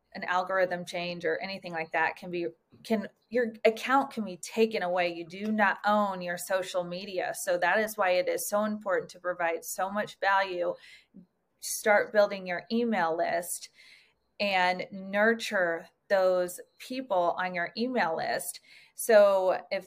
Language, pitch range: English, 180-225 Hz